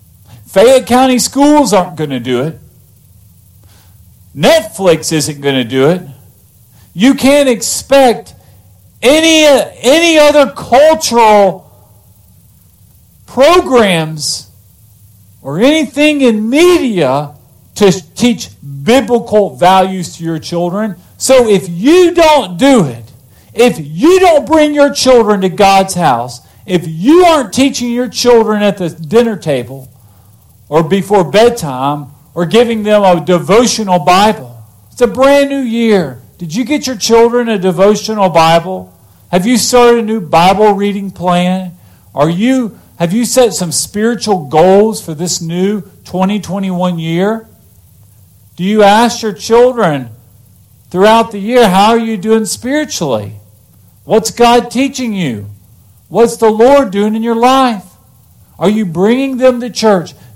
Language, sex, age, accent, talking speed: English, male, 50-69, American, 130 wpm